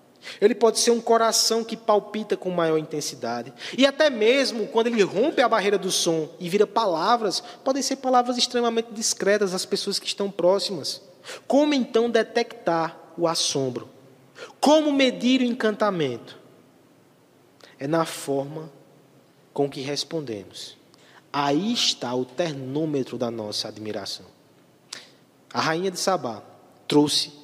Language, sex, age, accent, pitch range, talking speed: Portuguese, male, 20-39, Brazilian, 145-220 Hz, 130 wpm